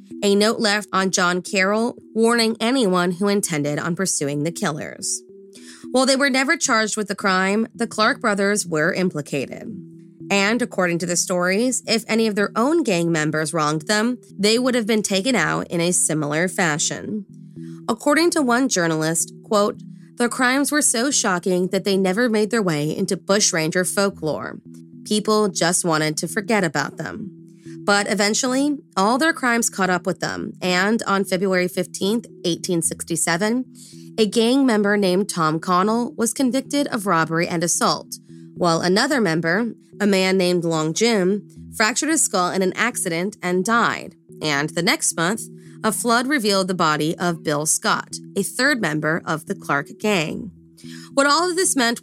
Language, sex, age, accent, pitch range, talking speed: English, female, 20-39, American, 170-220 Hz, 165 wpm